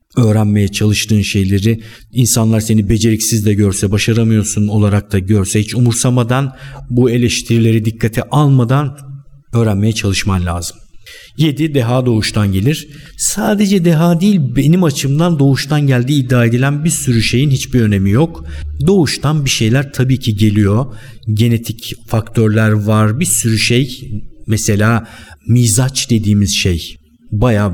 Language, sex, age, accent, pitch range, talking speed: Turkish, male, 50-69, native, 105-135 Hz, 125 wpm